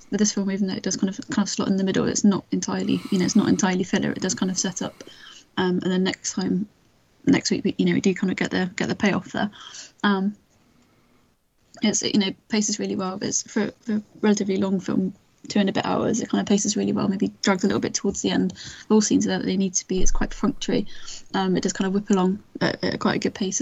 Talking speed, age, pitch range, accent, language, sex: 275 wpm, 10-29, 190-210 Hz, British, English, female